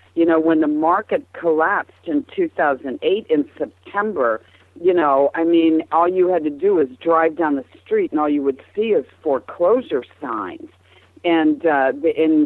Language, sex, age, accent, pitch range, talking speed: English, female, 50-69, American, 150-195 Hz, 170 wpm